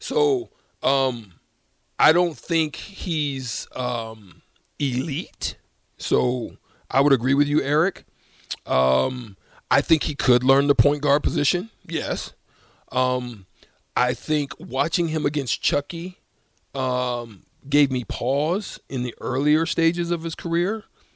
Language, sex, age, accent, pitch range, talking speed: English, male, 40-59, American, 120-155 Hz, 125 wpm